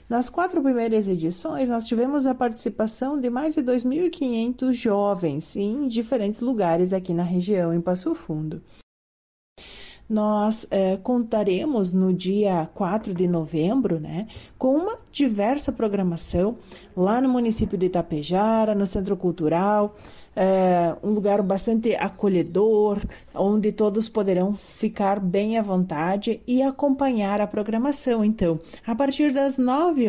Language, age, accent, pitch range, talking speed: Portuguese, 30-49, Brazilian, 190-250 Hz, 125 wpm